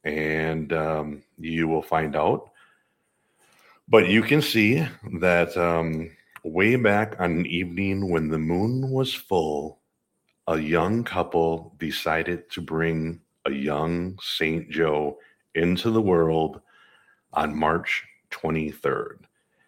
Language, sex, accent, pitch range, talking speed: English, male, American, 80-95 Hz, 115 wpm